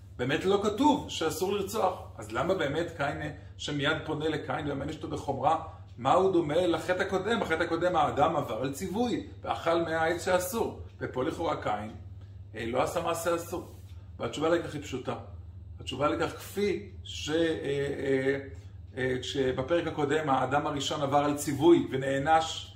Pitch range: 110-160 Hz